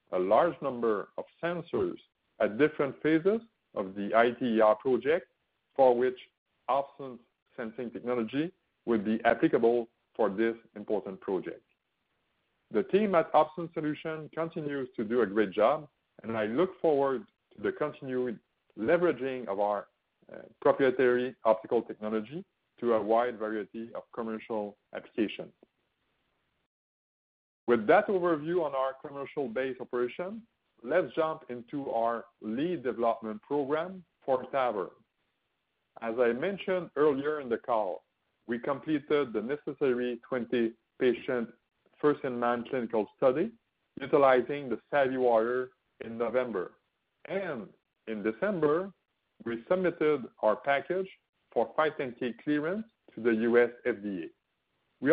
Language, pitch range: English, 115-155 Hz